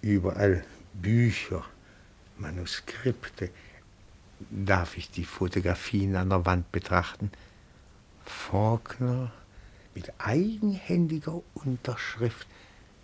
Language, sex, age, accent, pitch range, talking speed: German, male, 60-79, German, 90-110 Hz, 70 wpm